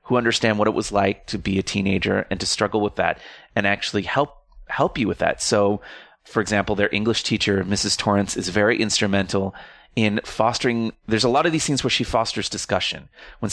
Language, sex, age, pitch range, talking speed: English, male, 30-49, 105-130 Hz, 205 wpm